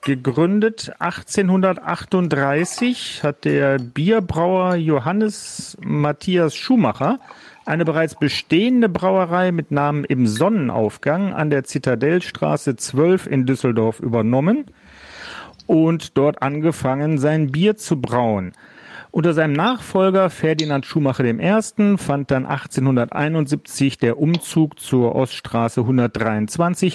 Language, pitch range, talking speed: German, 130-180 Hz, 100 wpm